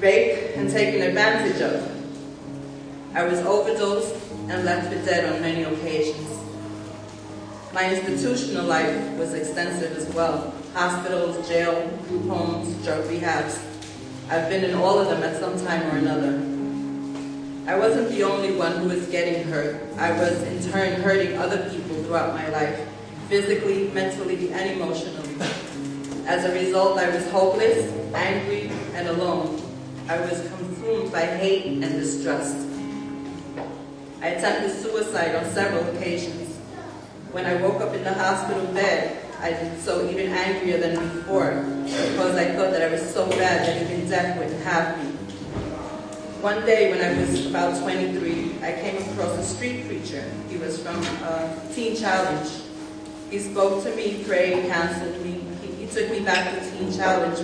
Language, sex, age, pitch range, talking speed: English, female, 30-49, 150-185 Hz, 155 wpm